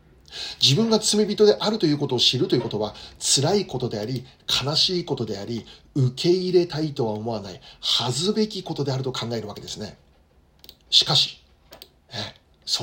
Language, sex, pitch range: Japanese, male, 120-180 Hz